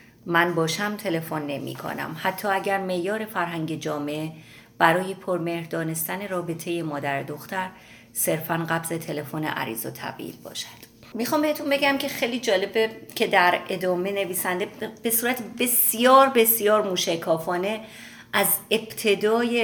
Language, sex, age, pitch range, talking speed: Persian, female, 30-49, 165-215 Hz, 120 wpm